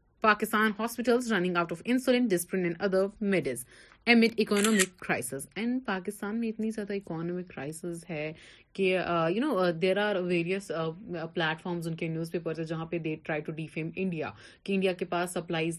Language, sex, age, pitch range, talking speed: Urdu, female, 30-49, 175-250 Hz, 170 wpm